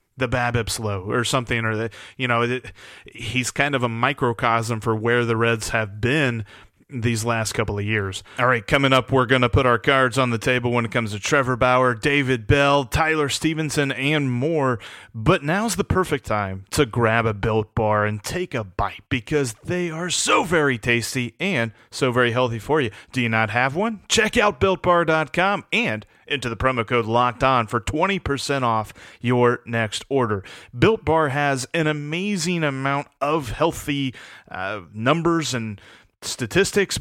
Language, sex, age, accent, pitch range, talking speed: English, male, 30-49, American, 115-150 Hz, 175 wpm